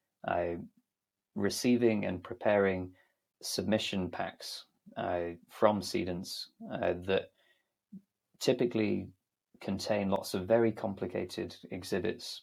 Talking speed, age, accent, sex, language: 90 wpm, 20-39, British, male, English